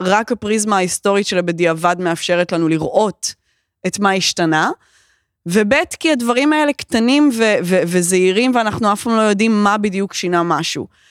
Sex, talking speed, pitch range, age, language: female, 150 wpm, 185-245 Hz, 20-39, Hebrew